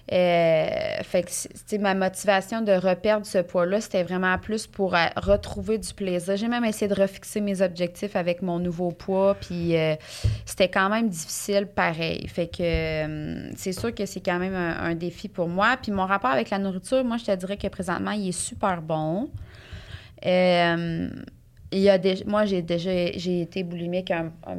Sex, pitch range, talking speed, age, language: female, 165-195 Hz, 190 wpm, 20-39, French